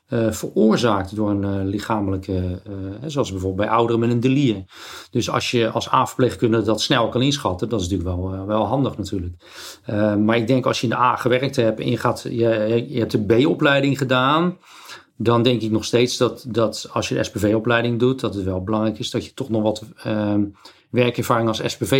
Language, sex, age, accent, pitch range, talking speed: Dutch, male, 40-59, Dutch, 110-130 Hz, 205 wpm